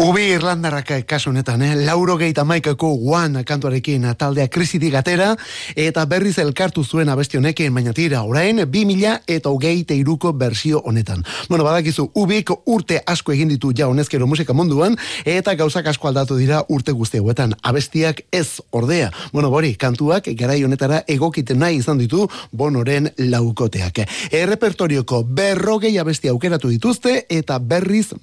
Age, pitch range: 30-49, 130-175 Hz